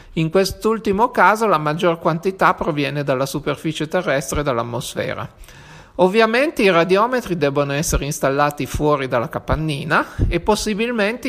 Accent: native